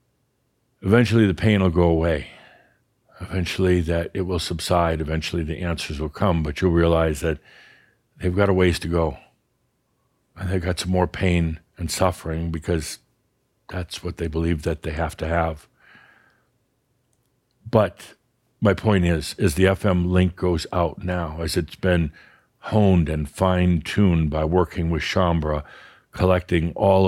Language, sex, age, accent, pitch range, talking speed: English, male, 60-79, American, 85-110 Hz, 160 wpm